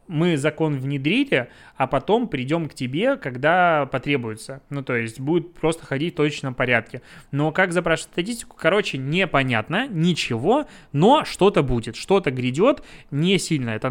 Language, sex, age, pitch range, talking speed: Russian, male, 20-39, 135-165 Hz, 145 wpm